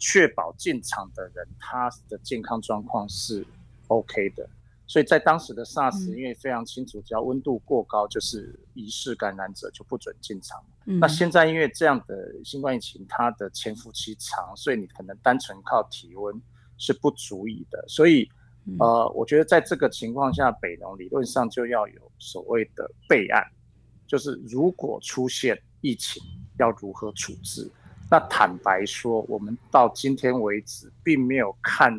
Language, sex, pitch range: Chinese, male, 110-145 Hz